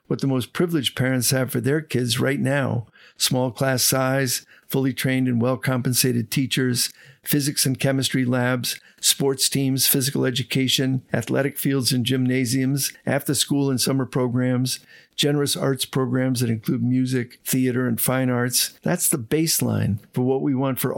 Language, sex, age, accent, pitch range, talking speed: English, male, 50-69, American, 120-140 Hz, 155 wpm